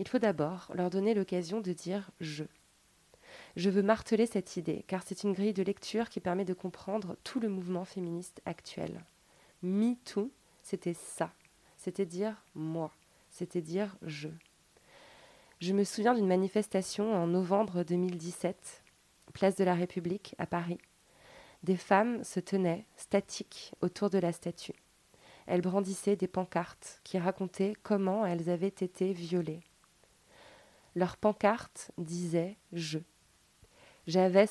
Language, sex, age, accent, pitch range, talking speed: French, female, 20-39, French, 175-200 Hz, 140 wpm